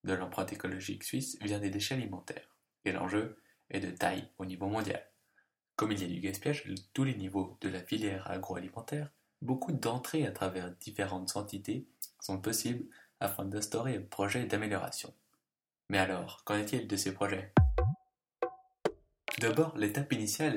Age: 20-39